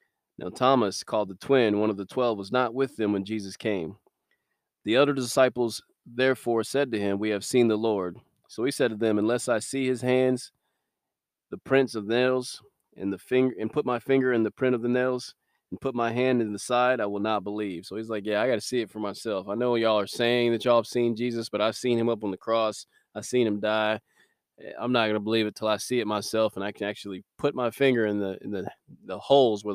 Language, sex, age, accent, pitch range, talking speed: English, male, 20-39, American, 105-125 Hz, 245 wpm